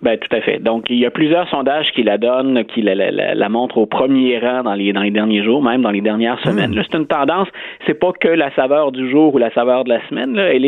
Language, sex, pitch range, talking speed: French, male, 120-175 Hz, 285 wpm